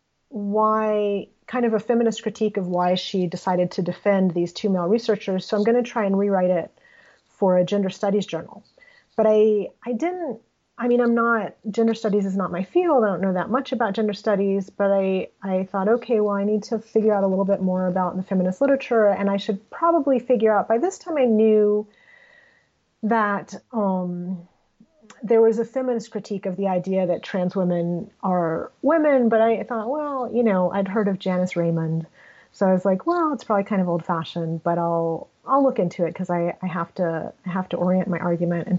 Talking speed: 210 wpm